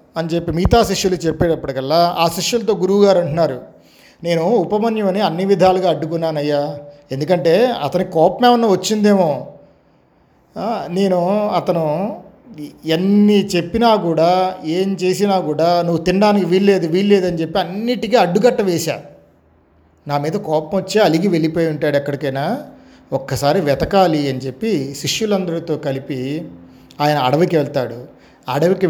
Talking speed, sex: 110 wpm, male